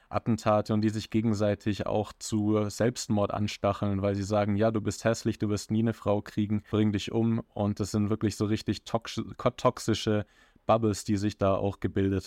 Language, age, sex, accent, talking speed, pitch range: German, 20-39, male, German, 185 wpm, 100-115 Hz